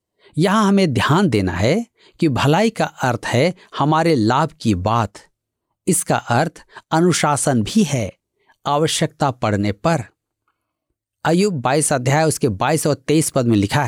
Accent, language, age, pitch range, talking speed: native, Hindi, 50-69, 120-180 Hz, 140 wpm